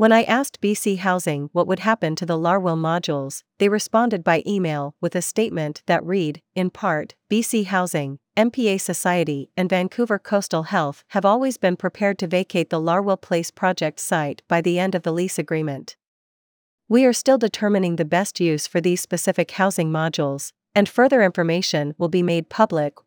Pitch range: 165-200 Hz